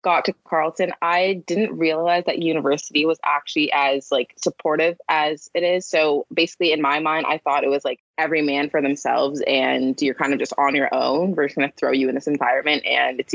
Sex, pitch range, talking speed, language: female, 140-170 Hz, 220 wpm, English